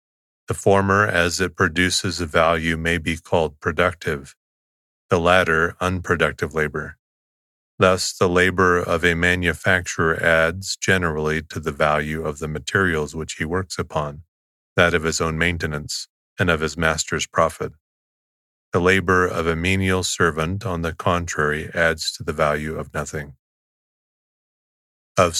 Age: 30-49